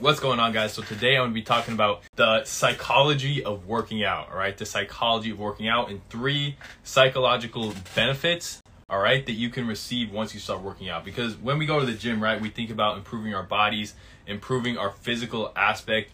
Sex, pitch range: male, 105-130 Hz